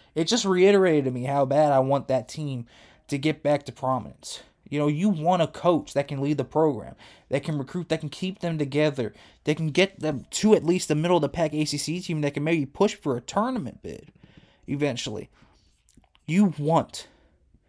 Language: English